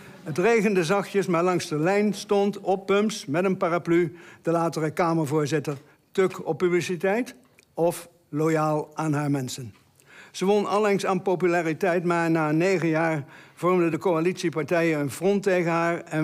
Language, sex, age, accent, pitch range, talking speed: Dutch, male, 60-79, Dutch, 145-185 Hz, 150 wpm